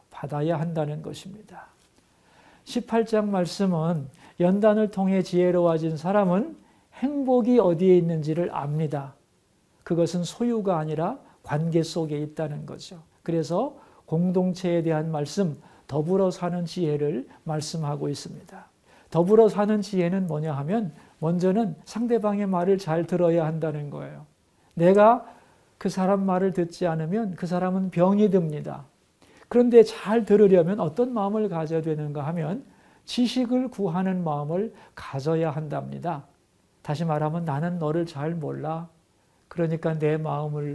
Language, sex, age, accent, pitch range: Korean, male, 50-69, native, 155-200 Hz